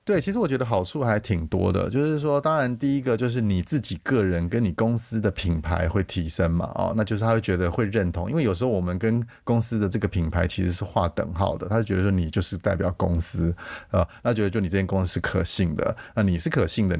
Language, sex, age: Chinese, male, 30-49